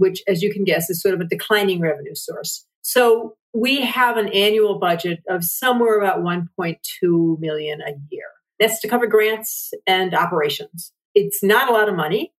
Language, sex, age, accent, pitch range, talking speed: English, female, 40-59, American, 170-215 Hz, 180 wpm